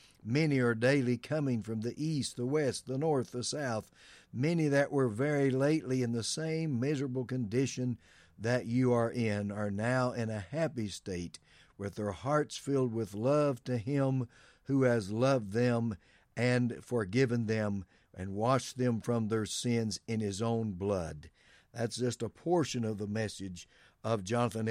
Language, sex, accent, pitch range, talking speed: English, male, American, 110-135 Hz, 165 wpm